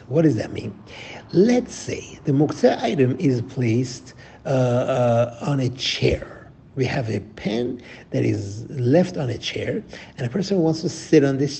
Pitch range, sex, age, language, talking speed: 115-150 Hz, male, 60-79, English, 175 wpm